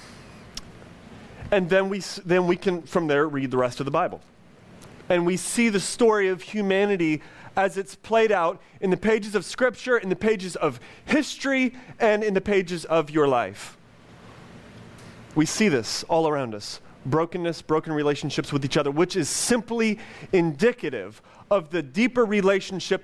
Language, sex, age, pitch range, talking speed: English, male, 30-49, 155-210 Hz, 160 wpm